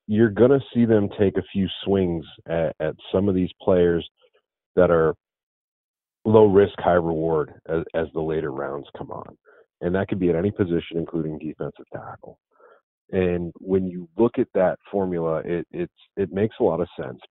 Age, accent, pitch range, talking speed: 40-59, American, 85-100 Hz, 175 wpm